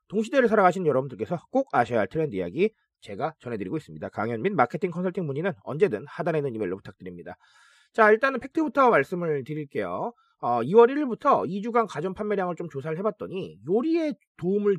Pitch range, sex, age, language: 170-260 Hz, male, 30-49, Korean